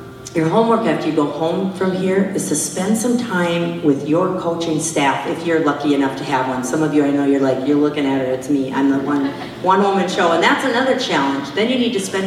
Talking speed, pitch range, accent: 255 wpm, 145-190 Hz, American